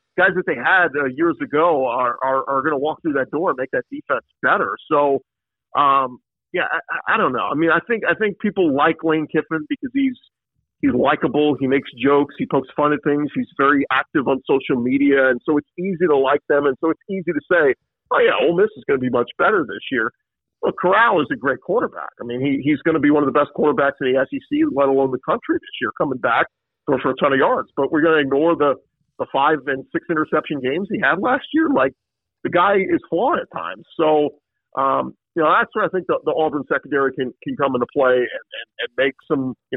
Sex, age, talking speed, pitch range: male, 50-69, 245 wpm, 135-175 Hz